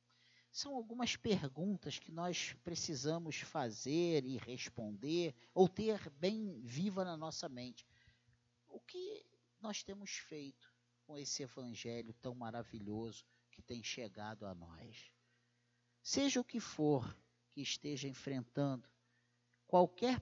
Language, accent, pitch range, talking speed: Portuguese, Brazilian, 120-185 Hz, 115 wpm